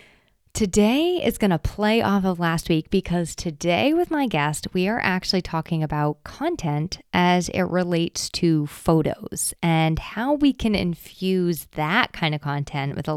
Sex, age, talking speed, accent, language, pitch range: female, 20-39, 165 wpm, American, English, 155-205 Hz